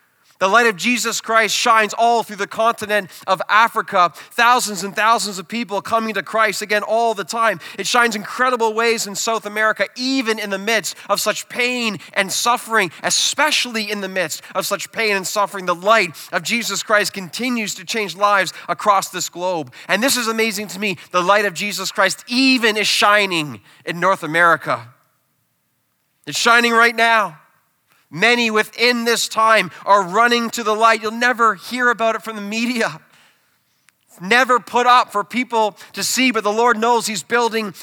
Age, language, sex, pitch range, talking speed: 30-49, English, male, 195-235 Hz, 180 wpm